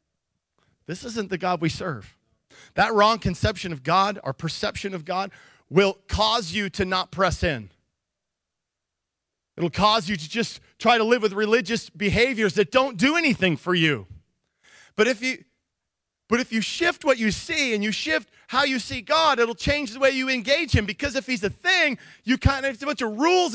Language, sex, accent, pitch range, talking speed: English, male, American, 185-270 Hz, 195 wpm